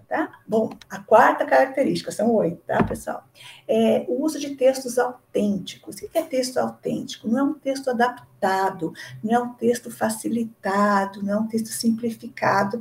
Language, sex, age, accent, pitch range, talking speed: Portuguese, female, 50-69, Brazilian, 225-295 Hz, 165 wpm